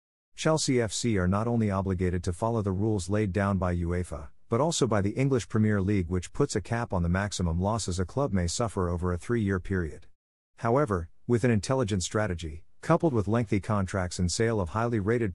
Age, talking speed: 50-69, 205 wpm